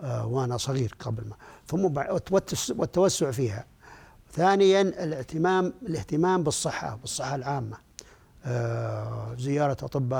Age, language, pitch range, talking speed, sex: 60-79, Arabic, 130-170 Hz, 80 wpm, male